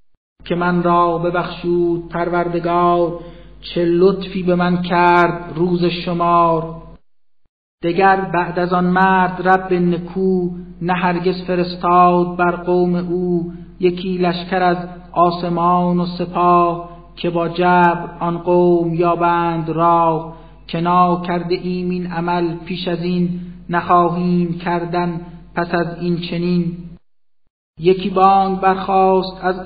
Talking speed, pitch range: 115 wpm, 175-180 Hz